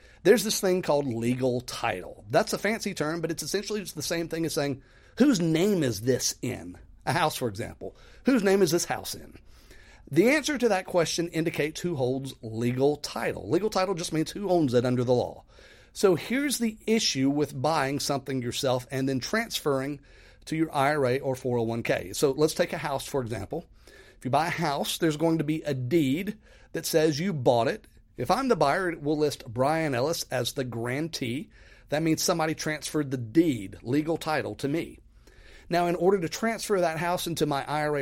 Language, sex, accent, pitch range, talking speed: English, male, American, 130-175 Hz, 195 wpm